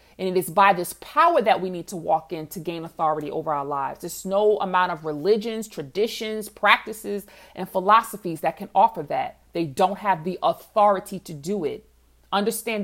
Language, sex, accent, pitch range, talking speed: English, female, American, 160-210 Hz, 185 wpm